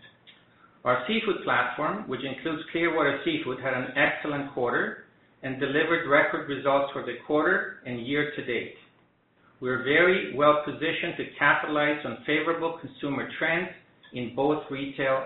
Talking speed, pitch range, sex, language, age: 140 wpm, 130-155 Hz, male, English, 50-69